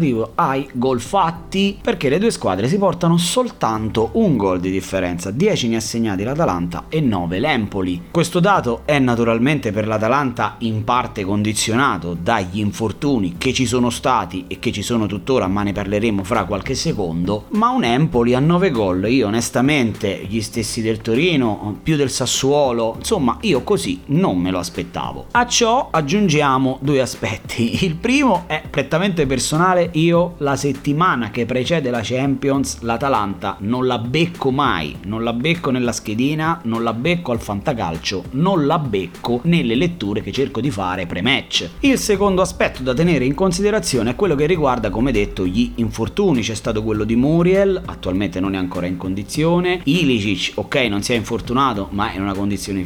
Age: 30-49